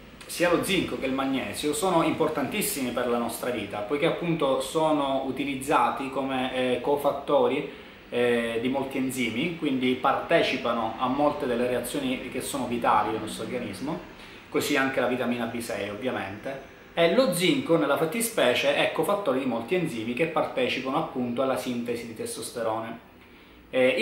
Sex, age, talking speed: male, 20-39, 145 wpm